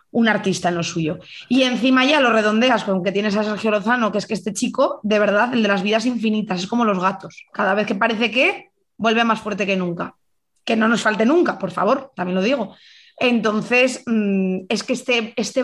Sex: female